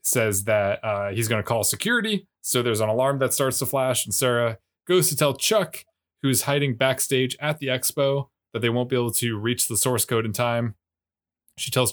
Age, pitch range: 20-39, 120-150 Hz